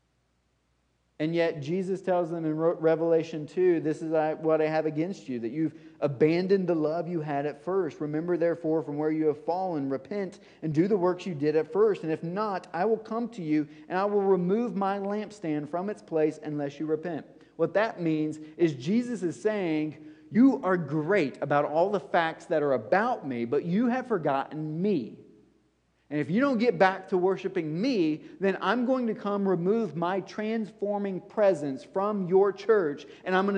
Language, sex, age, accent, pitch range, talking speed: English, male, 40-59, American, 150-195 Hz, 190 wpm